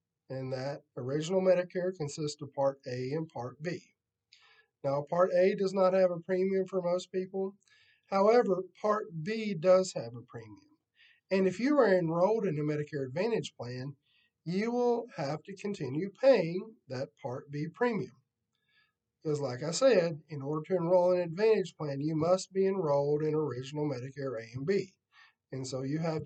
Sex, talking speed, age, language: male, 170 wpm, 50-69, English